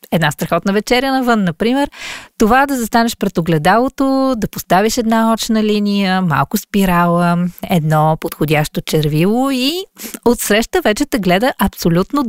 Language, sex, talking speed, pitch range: Bulgarian, female, 125 wpm, 180-235 Hz